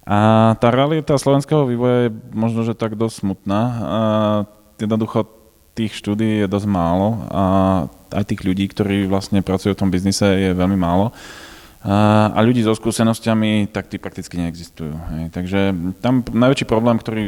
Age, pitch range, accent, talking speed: 20-39, 90-100 Hz, native, 155 wpm